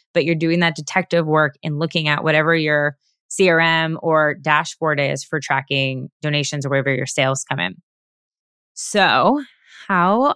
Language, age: English, 20-39